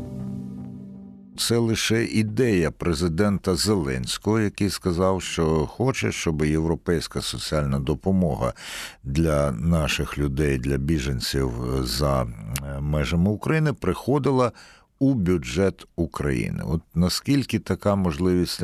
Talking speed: 95 wpm